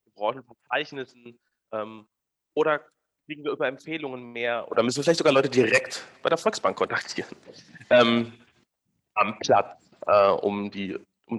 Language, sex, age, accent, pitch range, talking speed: German, male, 30-49, German, 115-150 Hz, 135 wpm